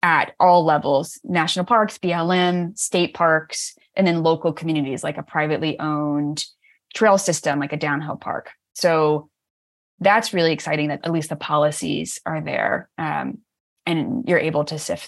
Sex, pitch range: female, 150-180 Hz